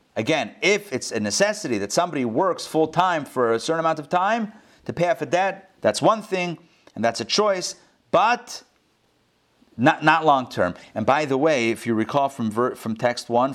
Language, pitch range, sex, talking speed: English, 115-160 Hz, male, 190 wpm